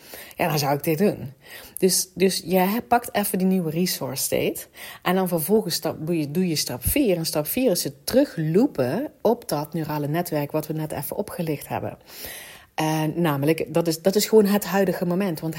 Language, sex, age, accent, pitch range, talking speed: Dutch, female, 40-59, Dutch, 155-195 Hz, 185 wpm